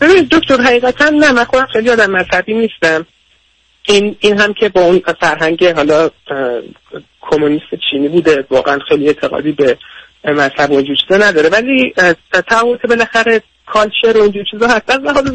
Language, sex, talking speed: Persian, male, 145 wpm